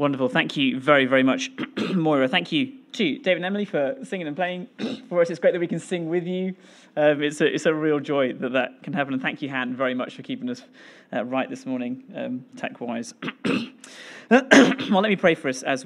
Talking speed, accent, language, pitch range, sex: 225 wpm, British, English, 150-235 Hz, male